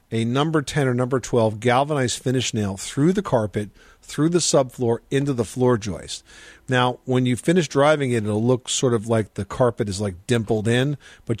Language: English